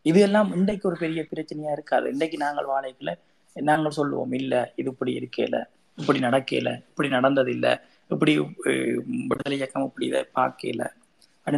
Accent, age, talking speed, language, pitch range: native, 20-39, 145 wpm, Tamil, 130-155 Hz